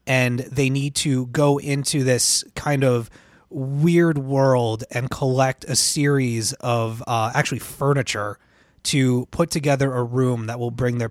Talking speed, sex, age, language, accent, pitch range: 150 wpm, male, 20-39, English, American, 120-150 Hz